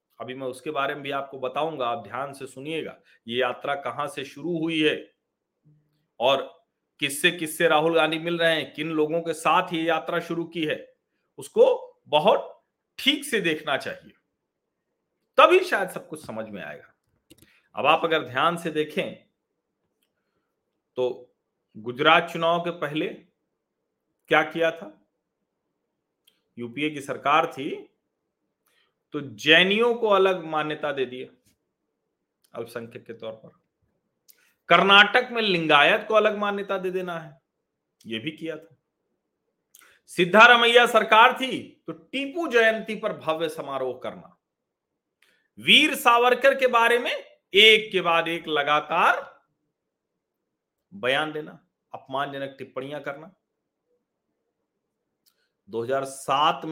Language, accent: Hindi, native